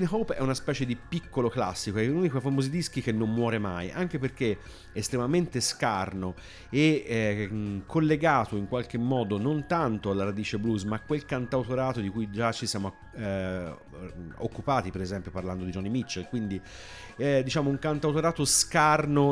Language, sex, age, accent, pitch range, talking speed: Italian, male, 40-59, native, 100-150 Hz, 170 wpm